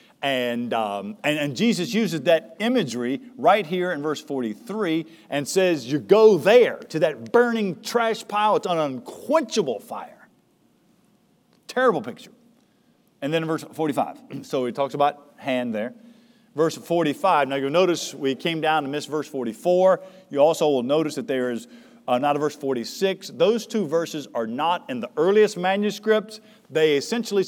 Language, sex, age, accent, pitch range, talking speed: English, male, 50-69, American, 145-225 Hz, 160 wpm